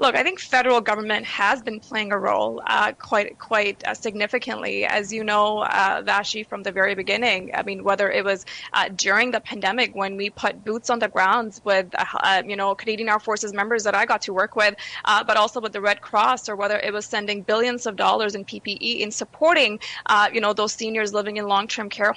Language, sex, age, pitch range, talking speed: English, female, 20-39, 205-230 Hz, 220 wpm